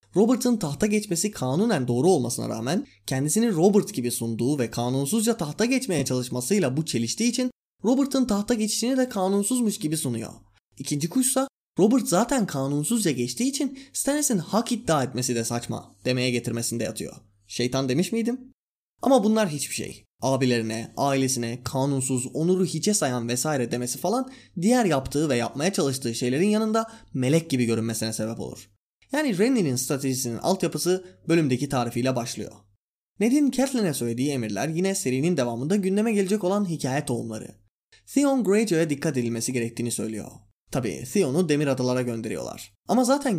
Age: 20-39